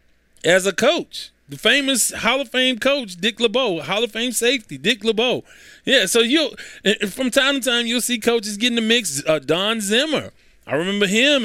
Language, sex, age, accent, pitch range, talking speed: English, male, 20-39, American, 155-220 Hz, 195 wpm